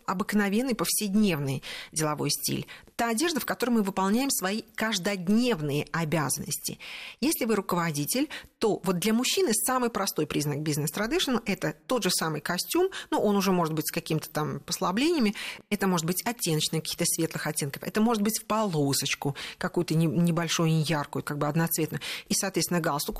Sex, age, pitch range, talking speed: female, 40-59, 165-220 Hz, 155 wpm